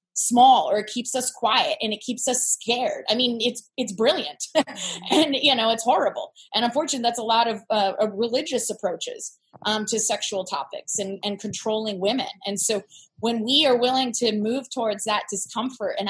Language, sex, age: English, female, 20-39